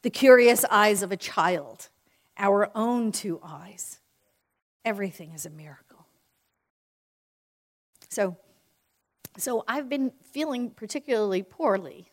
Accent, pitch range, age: American, 205-290 Hz, 50-69